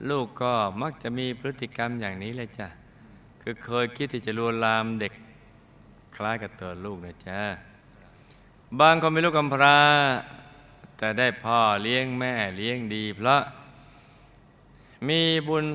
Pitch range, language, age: 100-135 Hz, Thai, 20-39